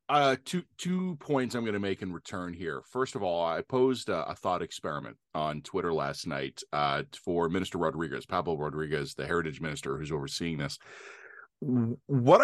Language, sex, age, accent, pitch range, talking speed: English, male, 30-49, American, 105-155 Hz, 180 wpm